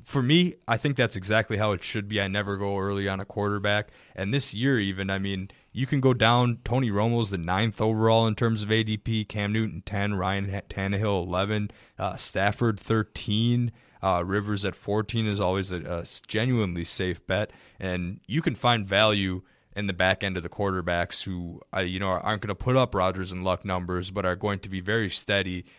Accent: American